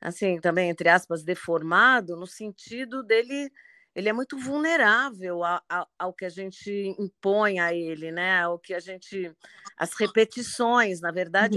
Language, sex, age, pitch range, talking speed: Portuguese, female, 40-59, 175-230 Hz, 155 wpm